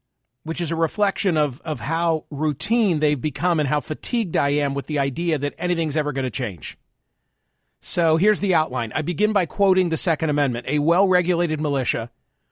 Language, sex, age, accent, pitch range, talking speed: English, male, 40-59, American, 145-185 Hz, 180 wpm